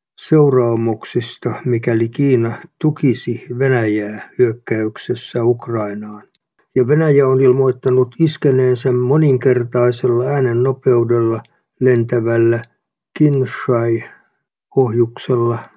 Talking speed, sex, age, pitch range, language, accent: 65 wpm, male, 60-79, 120-135 Hz, Finnish, native